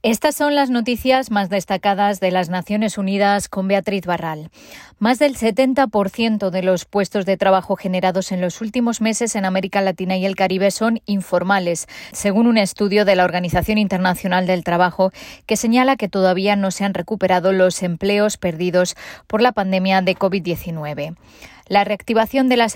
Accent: Spanish